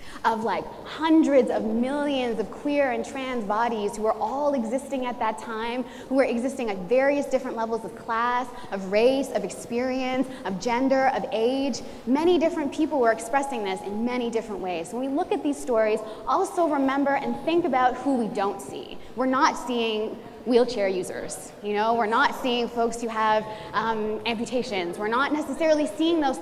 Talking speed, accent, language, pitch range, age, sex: 180 wpm, American, English, 220-290 Hz, 20-39, female